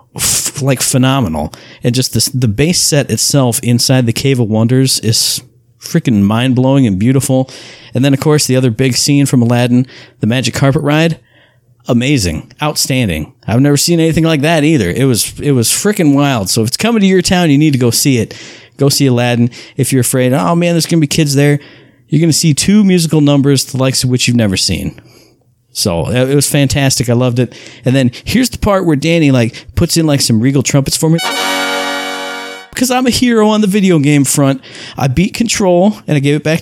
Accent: American